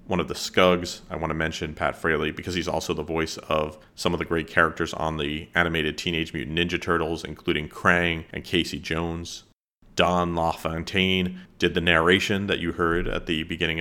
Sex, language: male, English